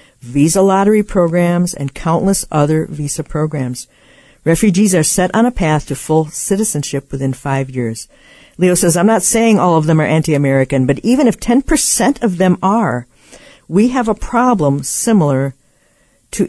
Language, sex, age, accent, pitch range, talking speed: English, female, 50-69, American, 145-190 Hz, 155 wpm